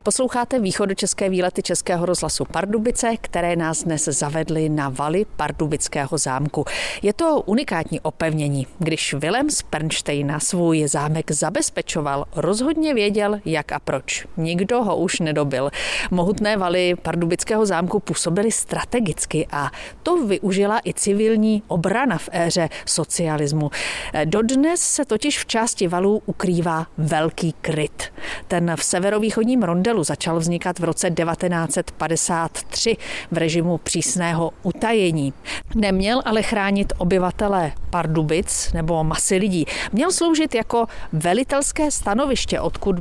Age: 40-59